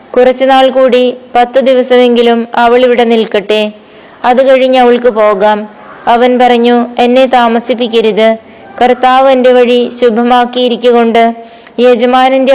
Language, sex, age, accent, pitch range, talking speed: Malayalam, female, 20-39, native, 230-255 Hz, 90 wpm